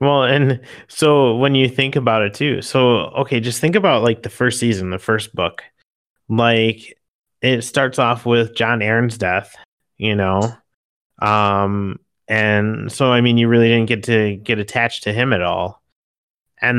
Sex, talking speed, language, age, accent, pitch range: male, 170 wpm, English, 30-49, American, 105-120 Hz